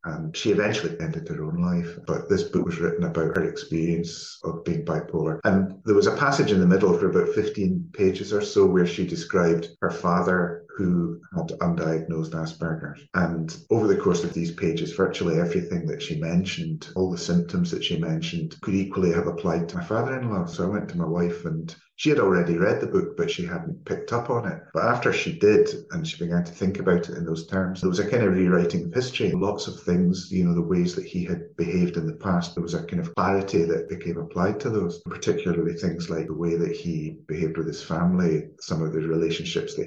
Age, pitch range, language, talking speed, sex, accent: 30-49, 85-140 Hz, English, 225 wpm, male, British